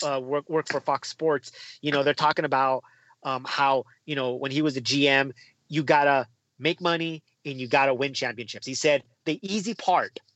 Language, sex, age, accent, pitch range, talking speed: English, male, 30-49, American, 135-225 Hz, 195 wpm